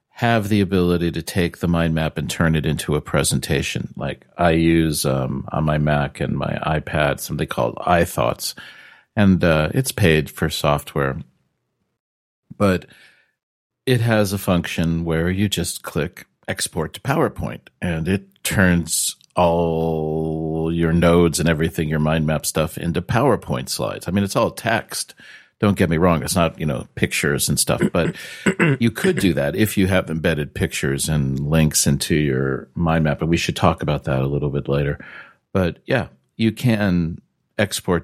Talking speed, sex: 170 wpm, male